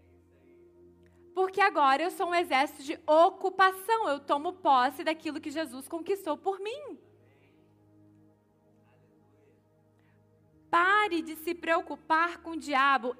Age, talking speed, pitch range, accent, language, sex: 20-39, 110 wpm, 265-375 Hz, Brazilian, Portuguese, female